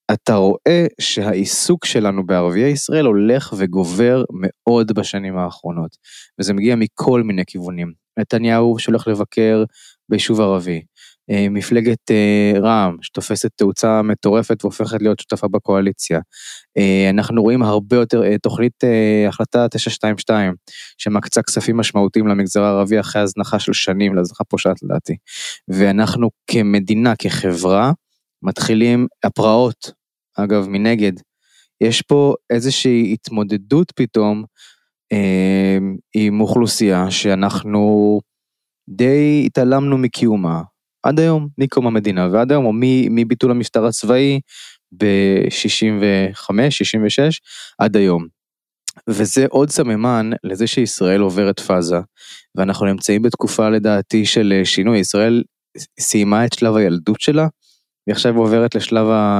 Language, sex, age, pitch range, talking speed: Hebrew, male, 20-39, 100-120 Hz, 105 wpm